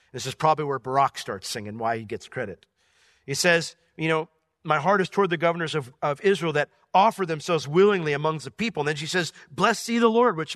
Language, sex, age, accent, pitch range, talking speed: English, male, 40-59, American, 155-215 Hz, 225 wpm